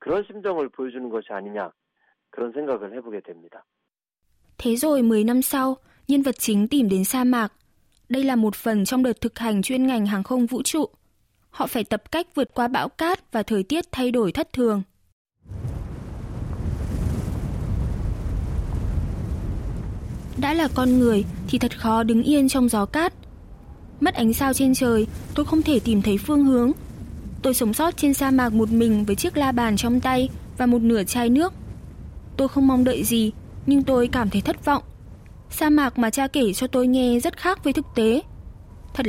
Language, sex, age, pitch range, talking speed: Vietnamese, female, 20-39, 205-265 Hz, 165 wpm